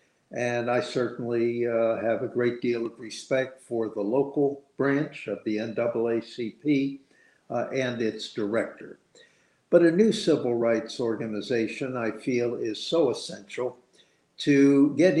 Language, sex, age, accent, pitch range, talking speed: English, male, 60-79, American, 115-140 Hz, 135 wpm